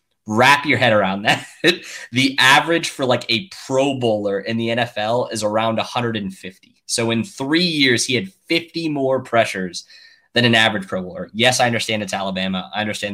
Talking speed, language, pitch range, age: 180 wpm, English, 100-120 Hz, 20-39